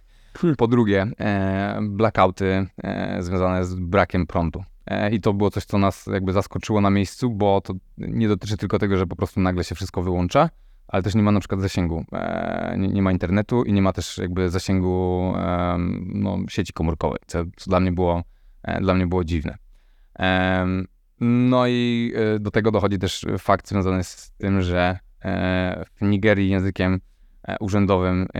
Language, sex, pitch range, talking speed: Polish, male, 90-100 Hz, 150 wpm